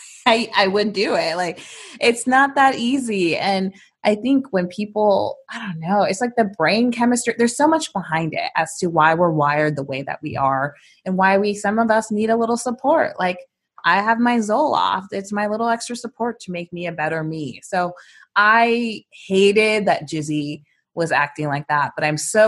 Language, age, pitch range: English, 20-39, 160-225 Hz